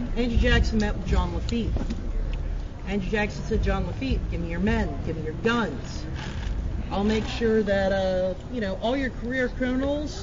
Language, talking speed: English, 175 wpm